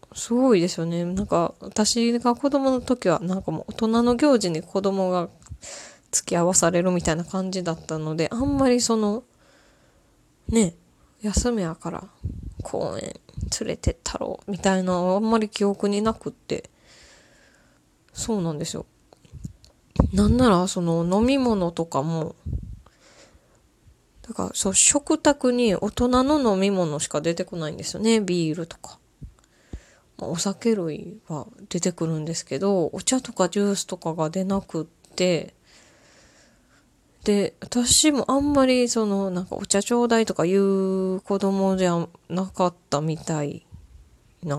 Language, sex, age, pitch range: Japanese, female, 20-39, 170-225 Hz